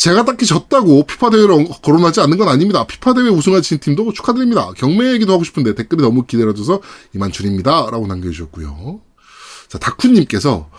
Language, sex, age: Korean, male, 20-39